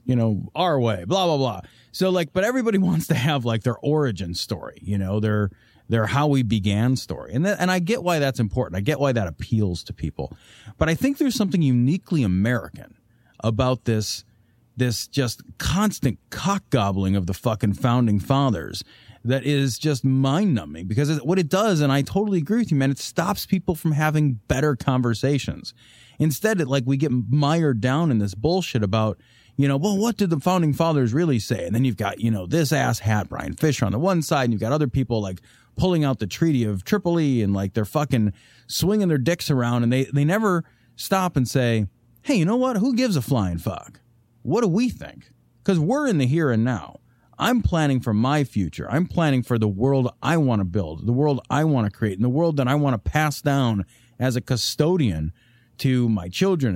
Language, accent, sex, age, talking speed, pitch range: English, American, male, 30-49, 210 wpm, 115-155 Hz